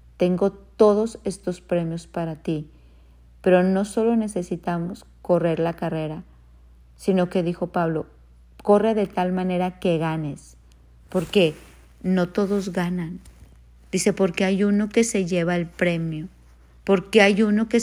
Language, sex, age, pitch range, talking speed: Spanish, female, 50-69, 160-195 Hz, 140 wpm